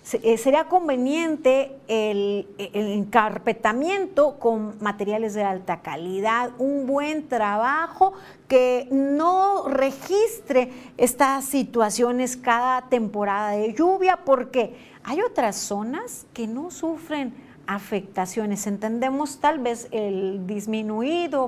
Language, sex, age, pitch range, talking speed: Spanish, female, 40-59, 215-270 Hz, 100 wpm